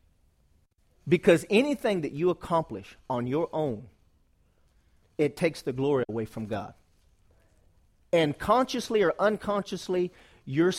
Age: 40-59